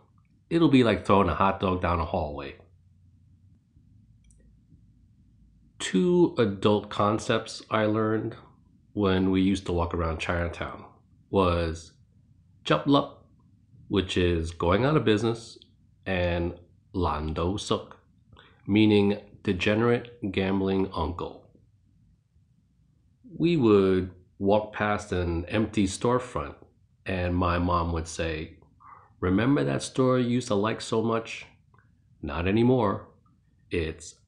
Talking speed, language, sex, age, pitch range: 105 wpm, English, male, 30-49, 85-110 Hz